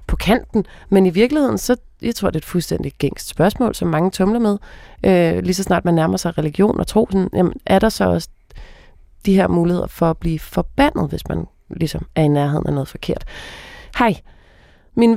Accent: native